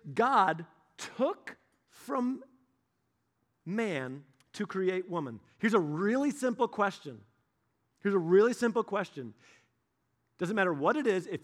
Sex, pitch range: male, 160-215 Hz